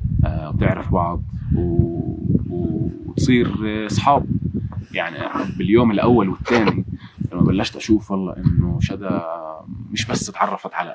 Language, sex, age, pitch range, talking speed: Arabic, male, 20-39, 95-125 Hz, 110 wpm